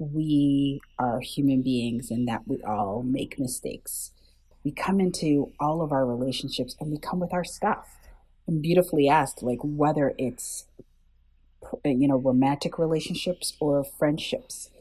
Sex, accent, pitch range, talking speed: female, American, 135-165 Hz, 140 wpm